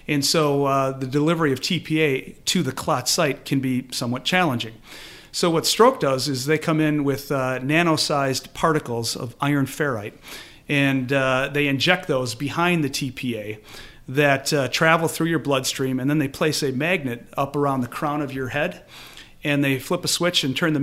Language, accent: English, American